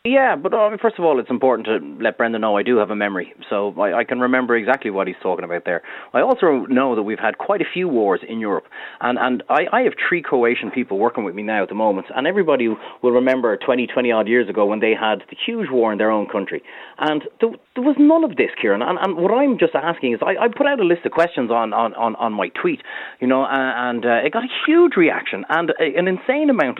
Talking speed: 255 wpm